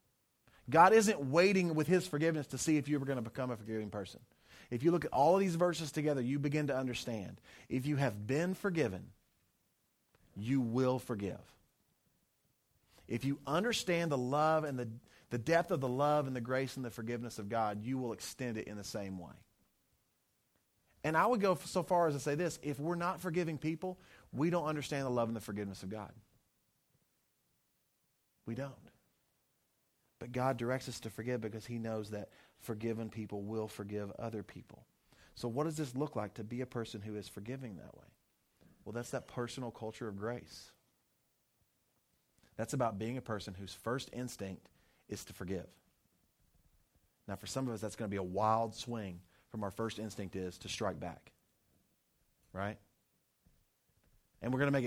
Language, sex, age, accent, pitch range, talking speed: English, male, 30-49, American, 105-140 Hz, 185 wpm